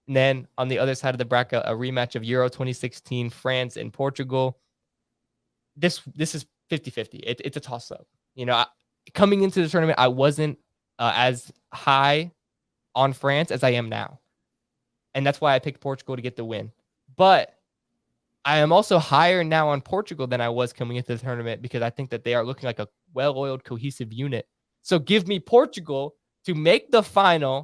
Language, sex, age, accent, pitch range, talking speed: English, male, 10-29, American, 125-160 Hz, 185 wpm